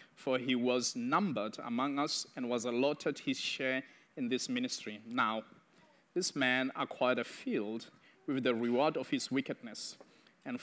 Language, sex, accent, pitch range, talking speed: English, male, South African, 125-175 Hz, 150 wpm